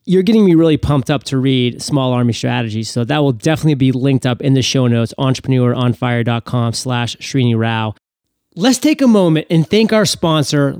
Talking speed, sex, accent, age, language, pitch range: 190 wpm, male, American, 30-49, English, 140-205 Hz